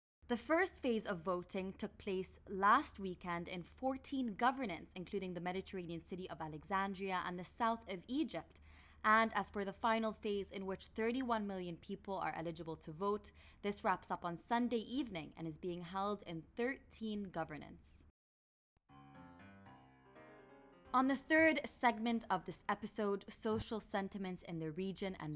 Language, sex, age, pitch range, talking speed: English, female, 20-39, 165-230 Hz, 150 wpm